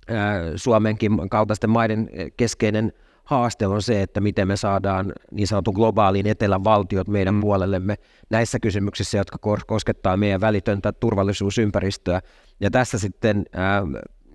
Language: Finnish